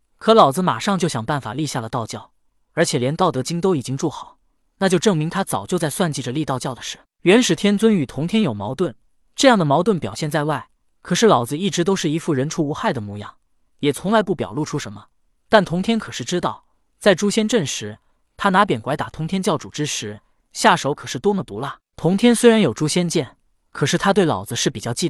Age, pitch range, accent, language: 20-39, 135-195 Hz, native, Chinese